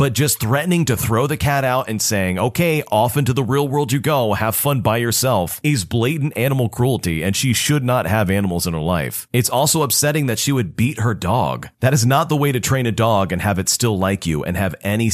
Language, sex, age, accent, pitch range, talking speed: English, male, 40-59, American, 105-140 Hz, 245 wpm